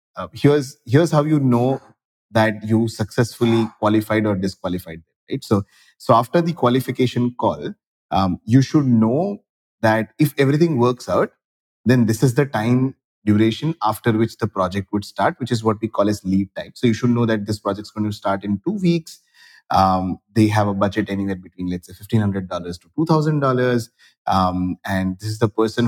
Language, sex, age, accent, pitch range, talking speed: English, male, 20-39, Indian, 105-130 Hz, 190 wpm